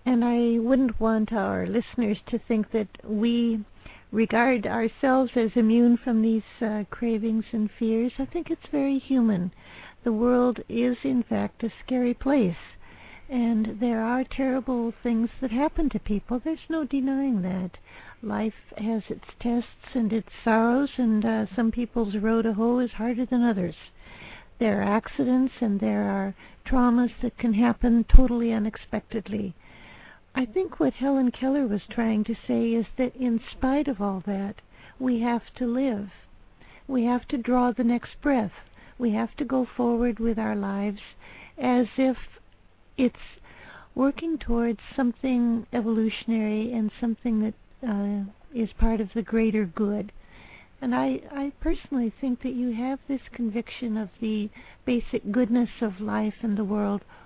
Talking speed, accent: 155 wpm, American